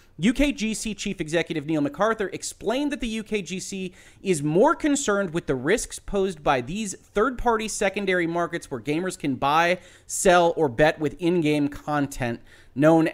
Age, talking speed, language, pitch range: 30-49, 145 wpm, English, 130-200 Hz